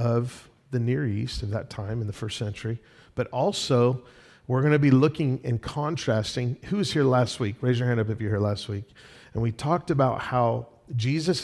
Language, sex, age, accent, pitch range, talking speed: English, male, 40-59, American, 115-140 Hz, 210 wpm